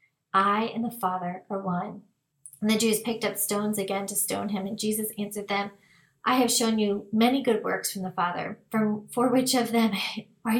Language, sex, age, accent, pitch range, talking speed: English, female, 30-49, American, 195-235 Hz, 200 wpm